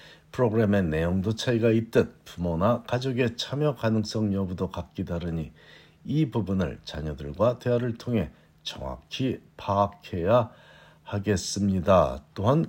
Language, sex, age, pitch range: Korean, male, 50-69, 90-120 Hz